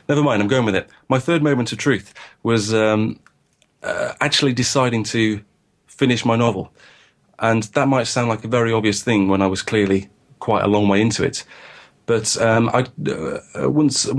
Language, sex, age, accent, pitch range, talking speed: English, male, 30-49, British, 100-120 Hz, 185 wpm